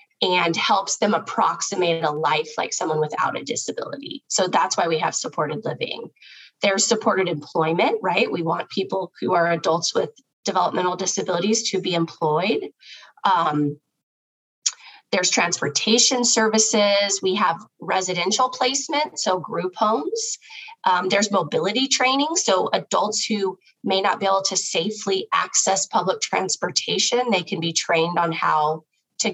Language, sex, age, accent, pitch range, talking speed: English, female, 20-39, American, 165-215 Hz, 140 wpm